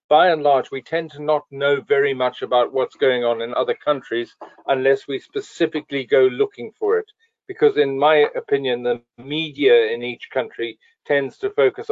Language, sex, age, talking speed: English, male, 40-59, 180 wpm